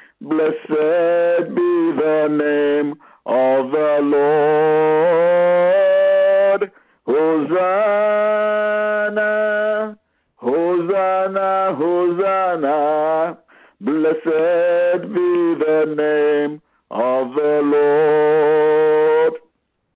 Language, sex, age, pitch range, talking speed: English, male, 50-69, 150-190 Hz, 50 wpm